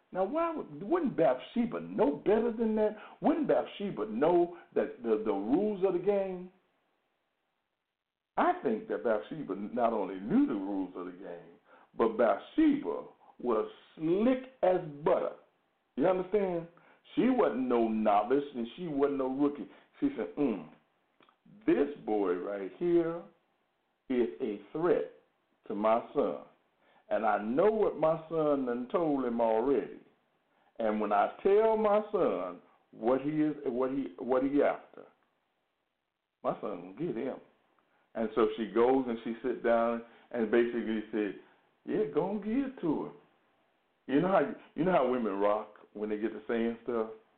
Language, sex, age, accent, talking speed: English, male, 60-79, American, 150 wpm